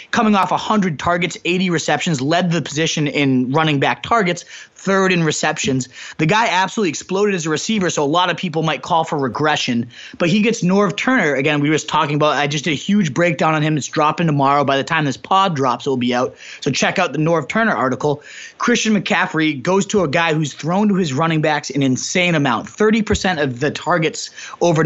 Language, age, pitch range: English, 20-39, 145-180 Hz